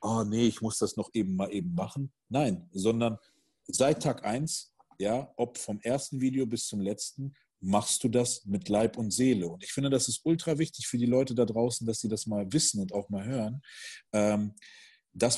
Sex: male